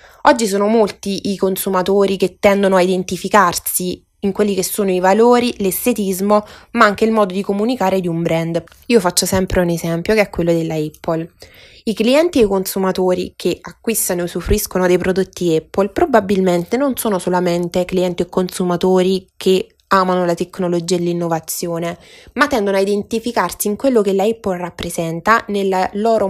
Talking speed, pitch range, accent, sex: 165 wpm, 180-210 Hz, native, female